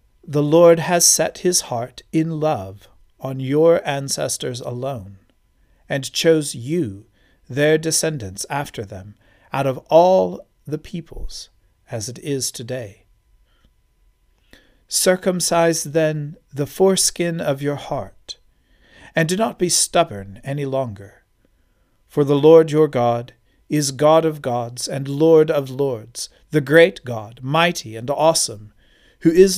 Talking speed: 130 wpm